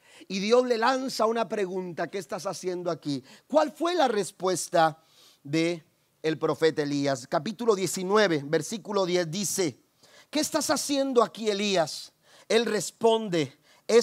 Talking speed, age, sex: 135 wpm, 40-59, male